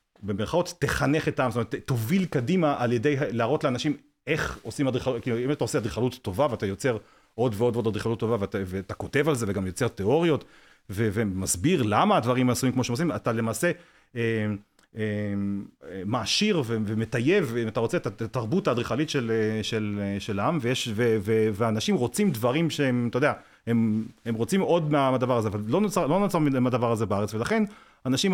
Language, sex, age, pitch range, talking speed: Hebrew, male, 40-59, 115-145 Hz, 185 wpm